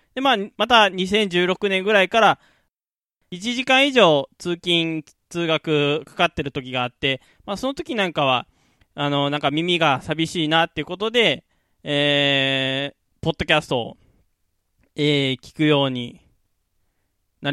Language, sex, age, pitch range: Japanese, male, 20-39, 135-185 Hz